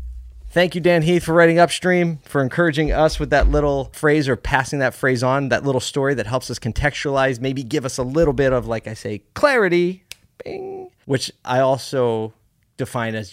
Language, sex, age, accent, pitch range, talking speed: English, male, 30-49, American, 115-150 Hz, 190 wpm